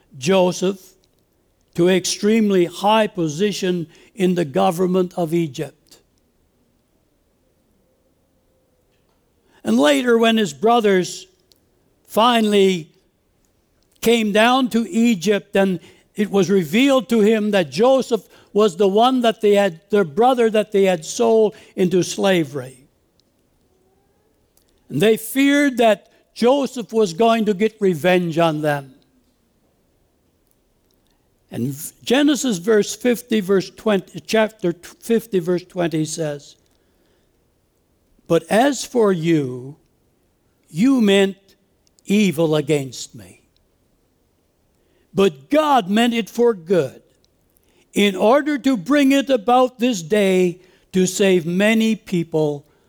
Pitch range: 170-225 Hz